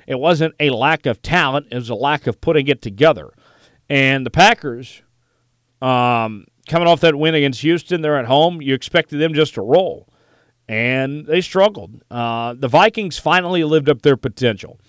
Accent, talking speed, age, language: American, 175 wpm, 40-59, English